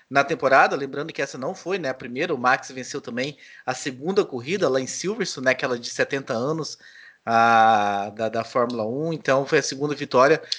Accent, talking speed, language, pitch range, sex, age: Brazilian, 195 wpm, Portuguese, 130-155 Hz, male, 20-39